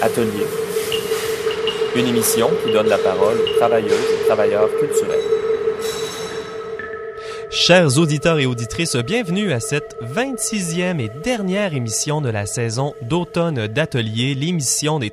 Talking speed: 120 wpm